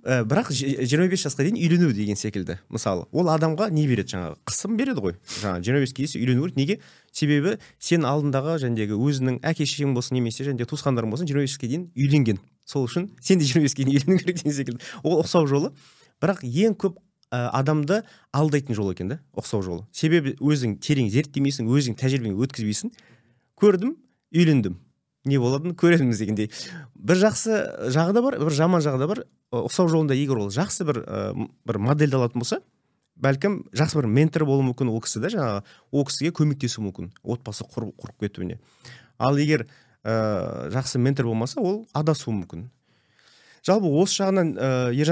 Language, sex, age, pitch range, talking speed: Russian, male, 30-49, 115-155 Hz, 110 wpm